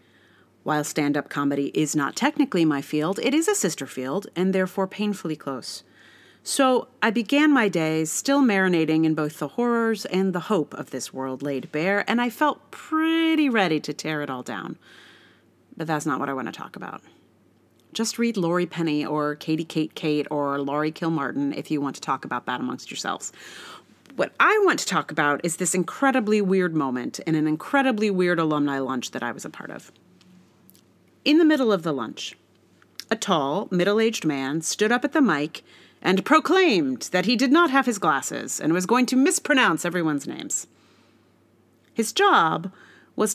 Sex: female